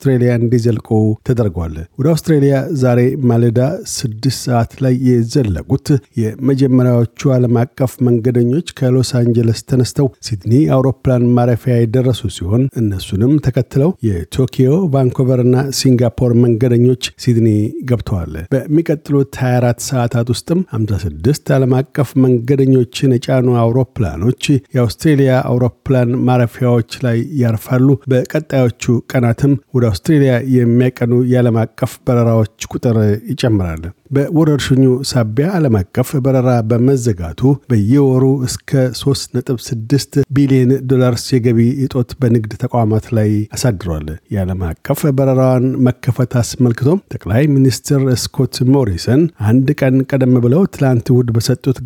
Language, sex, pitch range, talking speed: Amharic, male, 120-135 Hz, 100 wpm